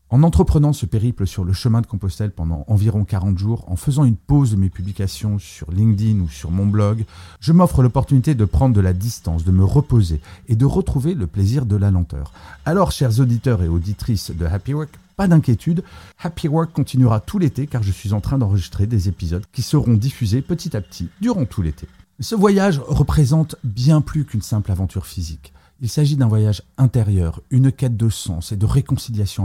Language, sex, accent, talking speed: French, male, French, 200 wpm